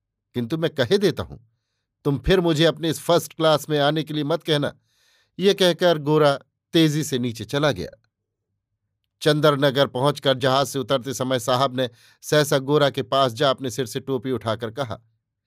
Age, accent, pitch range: 50-69, native, 120-155 Hz